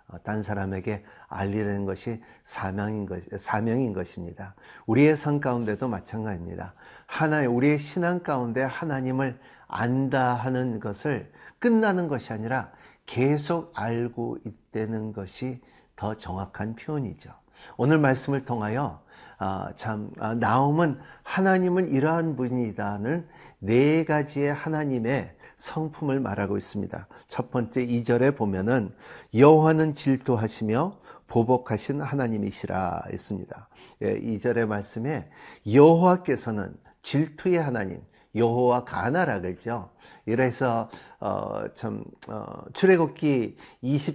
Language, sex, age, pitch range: Korean, male, 50-69, 110-150 Hz